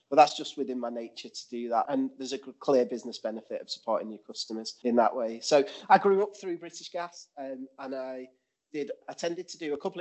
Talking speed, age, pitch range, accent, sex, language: 230 wpm, 30-49, 120-145 Hz, British, male, English